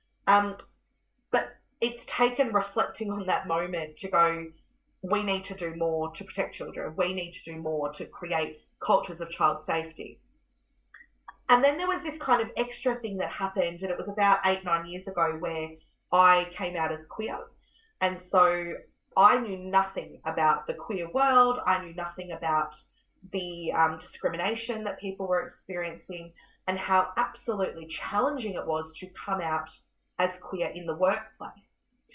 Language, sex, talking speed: English, female, 165 wpm